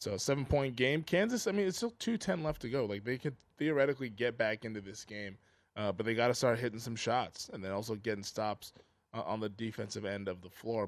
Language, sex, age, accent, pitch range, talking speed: English, male, 20-39, American, 100-120 Hz, 245 wpm